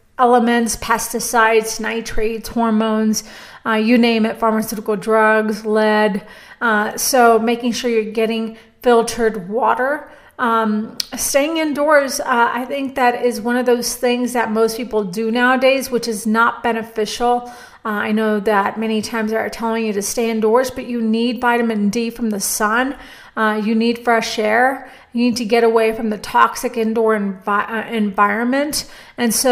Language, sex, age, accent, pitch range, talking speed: English, female, 40-59, American, 220-245 Hz, 160 wpm